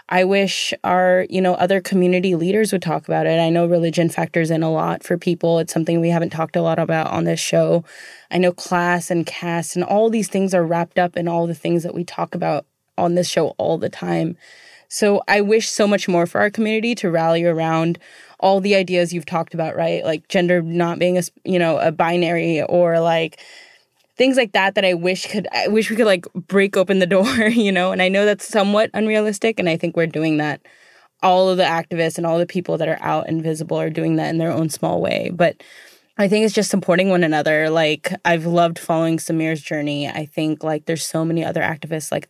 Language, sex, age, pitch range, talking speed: English, female, 10-29, 165-185 Hz, 230 wpm